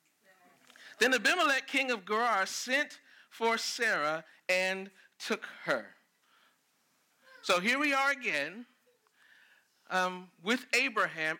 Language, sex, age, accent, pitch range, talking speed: English, male, 40-59, American, 180-240 Hz, 100 wpm